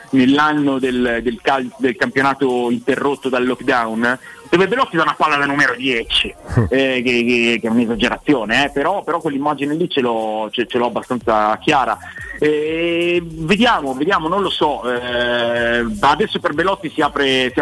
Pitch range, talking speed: 115-145 Hz, 165 wpm